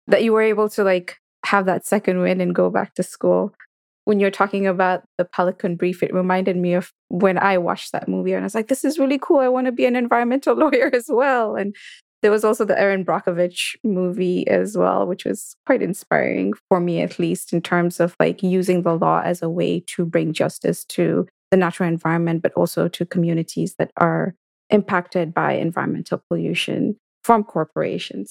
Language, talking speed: English, 200 wpm